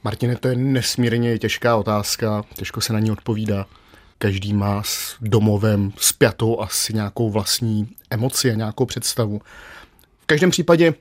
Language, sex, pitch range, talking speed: Czech, male, 110-135 Hz, 140 wpm